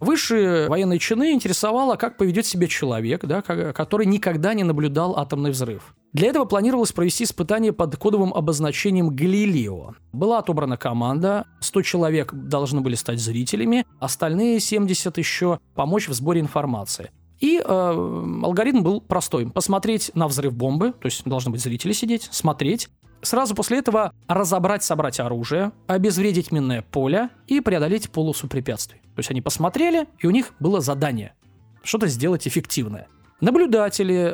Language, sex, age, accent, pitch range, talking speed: Russian, male, 20-39, native, 125-200 Hz, 140 wpm